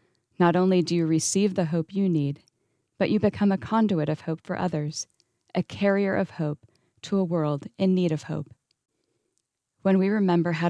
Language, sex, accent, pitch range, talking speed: English, female, American, 150-185 Hz, 185 wpm